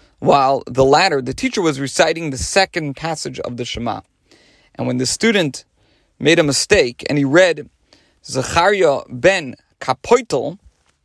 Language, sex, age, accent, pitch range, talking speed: English, male, 40-59, American, 115-160 Hz, 140 wpm